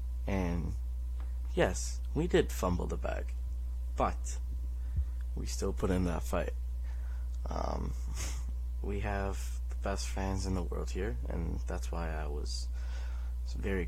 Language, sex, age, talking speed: English, male, 20-39, 130 wpm